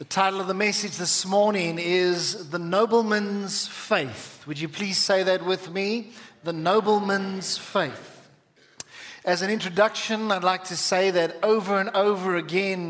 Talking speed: 155 wpm